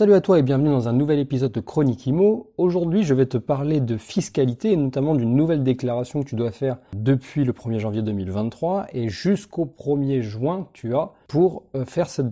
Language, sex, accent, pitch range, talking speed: French, male, French, 115-145 Hz, 205 wpm